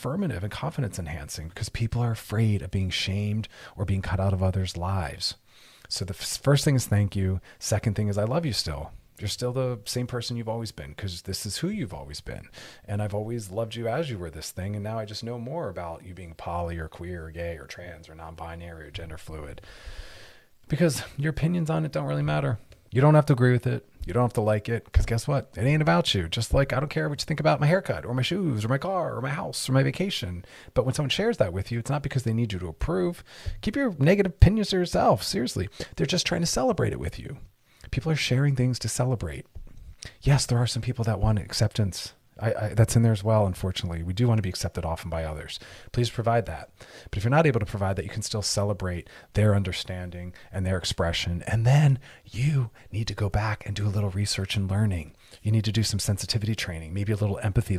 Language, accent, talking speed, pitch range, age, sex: English, American, 240 wpm, 95-125 Hz, 30-49, male